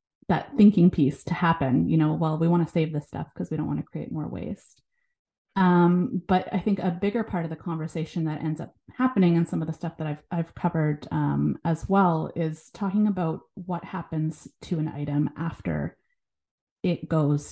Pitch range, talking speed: 155-185 Hz, 200 wpm